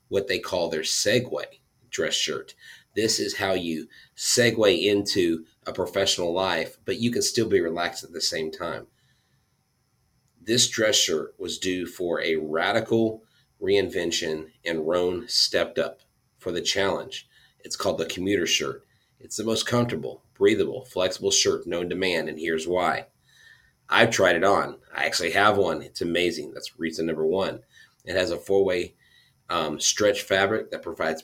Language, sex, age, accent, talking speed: English, male, 40-59, American, 160 wpm